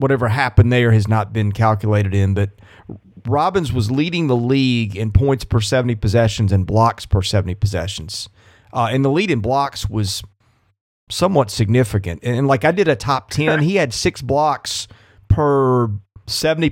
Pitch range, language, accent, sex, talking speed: 110-145 Hz, English, American, male, 170 wpm